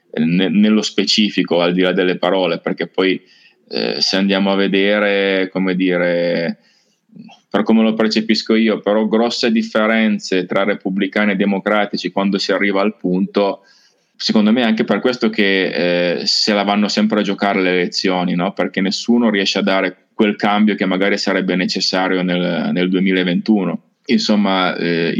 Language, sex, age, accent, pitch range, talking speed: Italian, male, 20-39, native, 95-105 Hz, 155 wpm